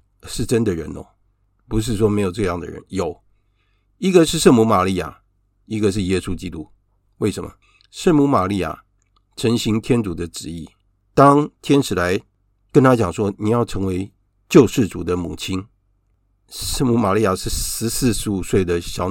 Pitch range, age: 95-115 Hz, 50-69